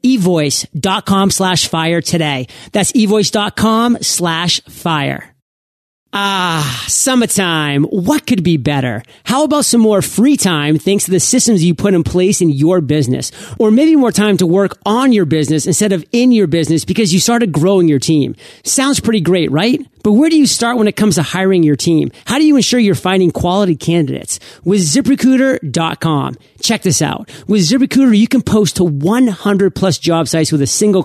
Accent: American